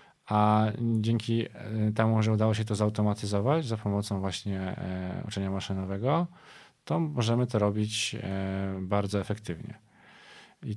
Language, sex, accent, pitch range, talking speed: Polish, male, native, 100-110 Hz, 110 wpm